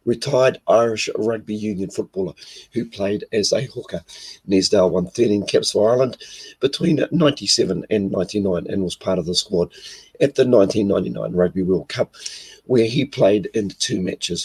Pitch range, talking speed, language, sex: 95-120 Hz, 160 wpm, English, male